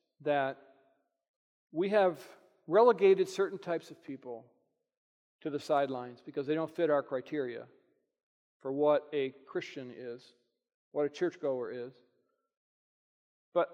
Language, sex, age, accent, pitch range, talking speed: English, male, 40-59, American, 145-215 Hz, 120 wpm